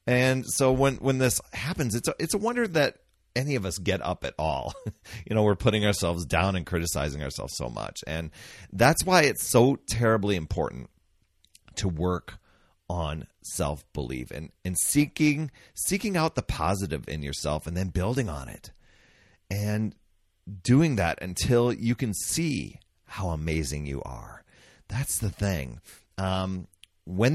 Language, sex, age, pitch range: English, male, 30-49, 85-120 Hz